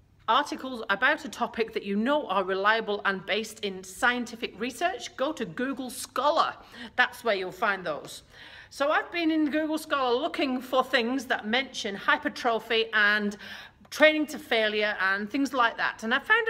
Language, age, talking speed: English, 40-59, 165 wpm